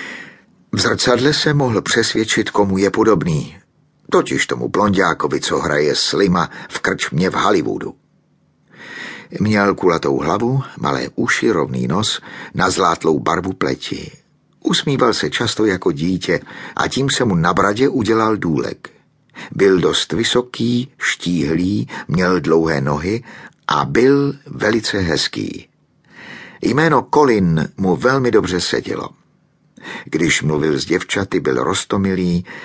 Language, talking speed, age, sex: Czech, 120 wpm, 50-69, male